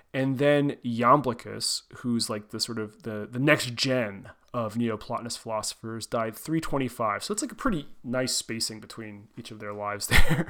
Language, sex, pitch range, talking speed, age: English, male, 120-150 Hz, 170 wpm, 30-49